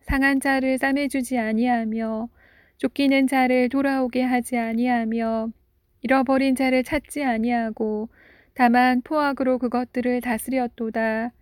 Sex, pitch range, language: female, 235-265 Hz, Korean